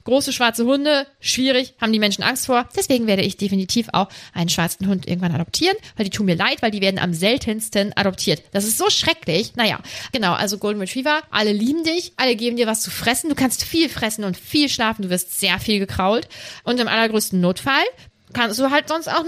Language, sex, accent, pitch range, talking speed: German, female, German, 195-265 Hz, 215 wpm